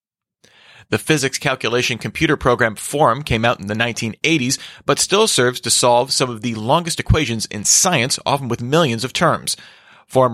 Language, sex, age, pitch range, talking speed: English, male, 30-49, 110-140 Hz, 170 wpm